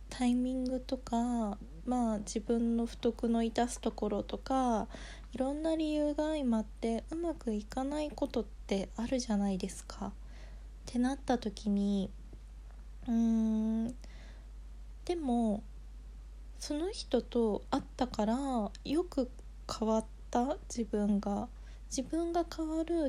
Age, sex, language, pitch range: 20-39, female, Japanese, 205-265 Hz